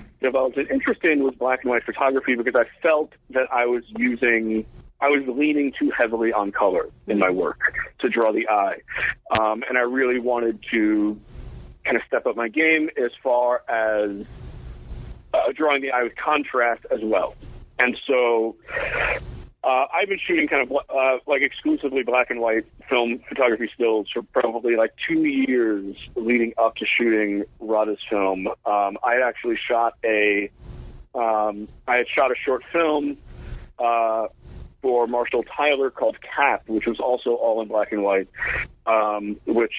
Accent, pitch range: American, 110-130 Hz